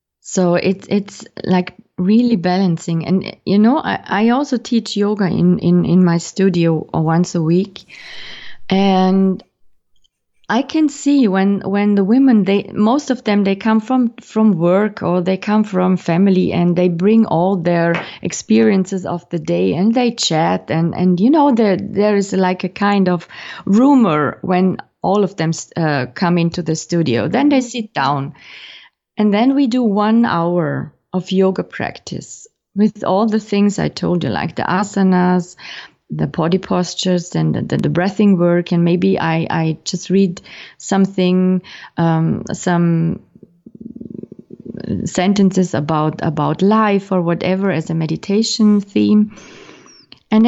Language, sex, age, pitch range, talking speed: English, female, 30-49, 175-210 Hz, 155 wpm